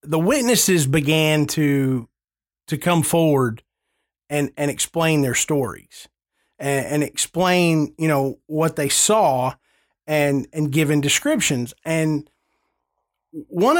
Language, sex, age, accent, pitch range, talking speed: English, male, 30-49, American, 140-180 Hz, 115 wpm